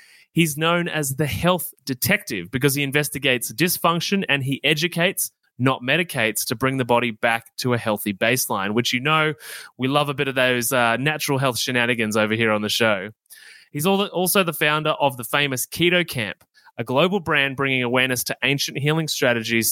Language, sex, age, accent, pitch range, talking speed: English, male, 20-39, Australian, 125-165 Hz, 185 wpm